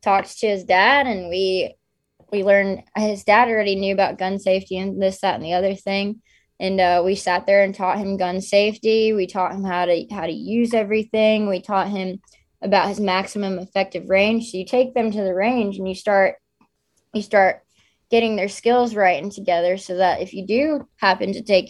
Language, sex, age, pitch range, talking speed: English, female, 20-39, 185-210 Hz, 205 wpm